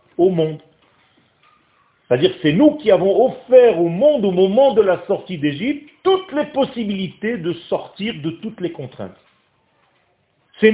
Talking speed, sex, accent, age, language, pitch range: 150 wpm, male, French, 40-59, French, 135-205 Hz